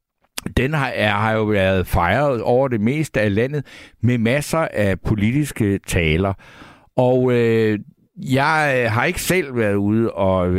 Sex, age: male, 60-79